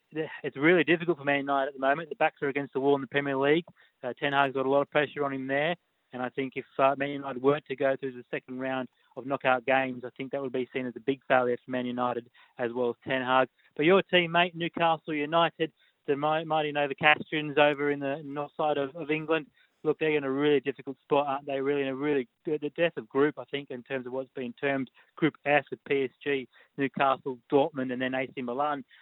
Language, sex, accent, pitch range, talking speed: English, male, Australian, 130-150 Hz, 245 wpm